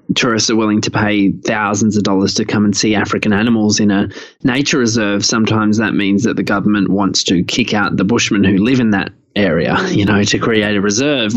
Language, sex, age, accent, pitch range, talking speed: English, male, 20-39, Australian, 100-115 Hz, 215 wpm